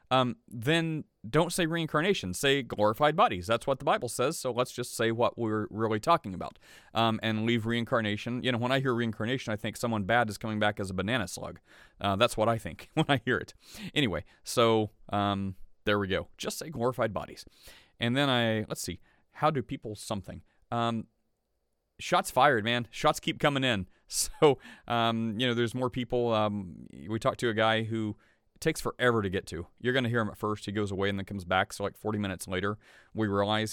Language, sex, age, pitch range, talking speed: English, male, 30-49, 105-135 Hz, 210 wpm